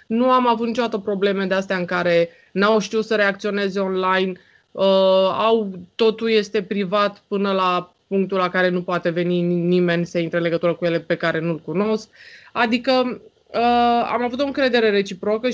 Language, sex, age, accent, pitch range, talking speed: Romanian, female, 20-39, native, 175-220 Hz, 170 wpm